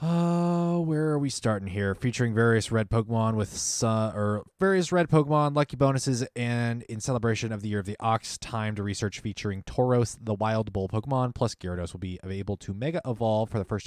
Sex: male